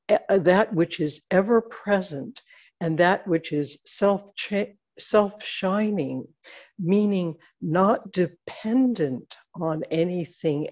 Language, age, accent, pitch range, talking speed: English, 60-79, American, 165-220 Hz, 100 wpm